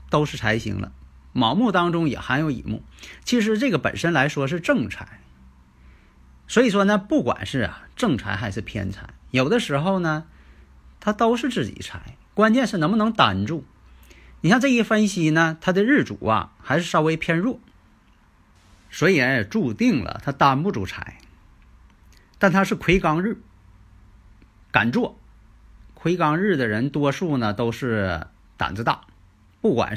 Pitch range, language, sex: 100-155 Hz, Chinese, male